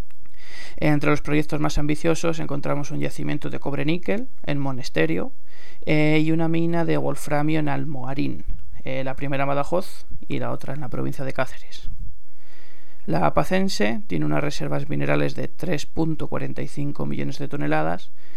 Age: 20-39